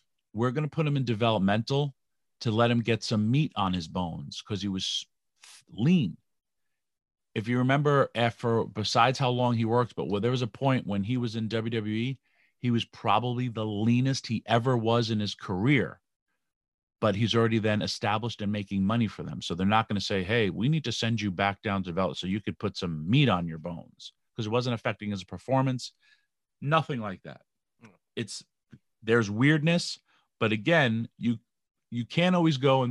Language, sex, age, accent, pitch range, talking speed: English, male, 40-59, American, 105-130 Hz, 195 wpm